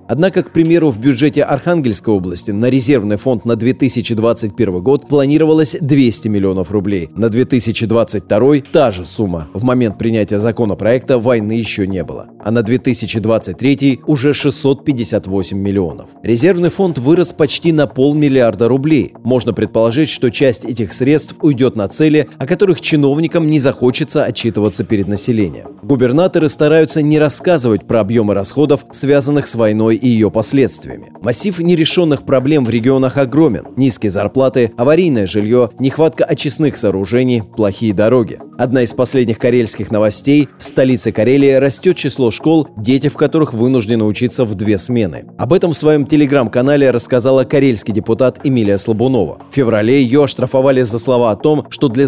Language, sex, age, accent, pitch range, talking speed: Russian, male, 30-49, native, 115-145 Hz, 145 wpm